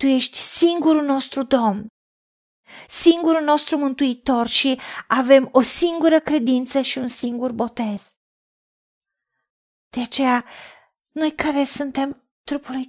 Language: Romanian